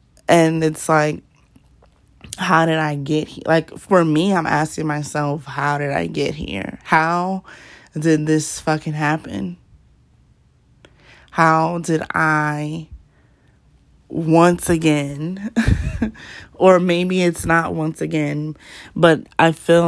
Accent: American